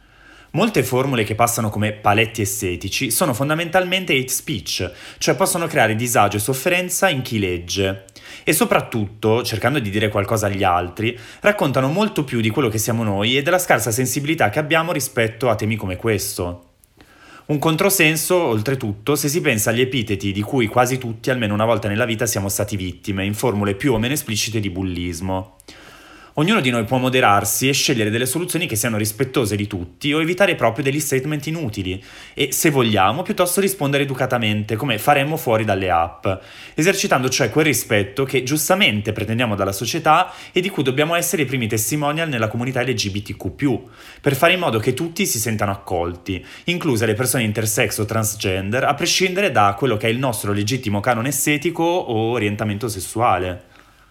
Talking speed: 170 wpm